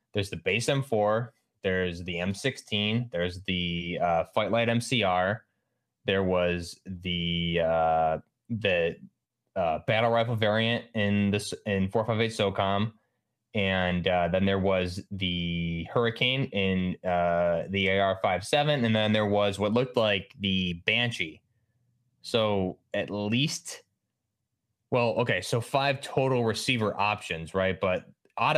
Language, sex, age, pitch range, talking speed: English, male, 20-39, 95-115 Hz, 125 wpm